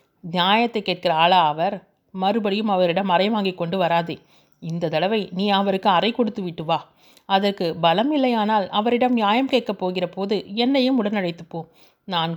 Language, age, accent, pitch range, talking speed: Tamil, 30-49, native, 180-235 Hz, 140 wpm